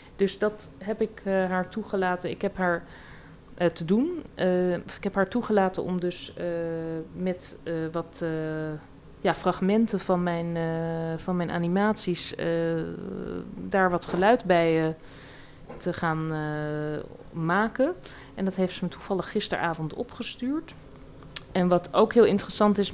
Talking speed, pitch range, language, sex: 145 wpm, 165-195 Hz, Dutch, female